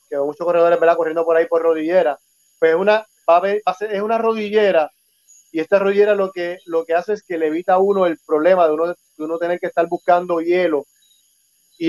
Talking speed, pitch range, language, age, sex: 225 wpm, 165-195 Hz, Spanish, 30-49, male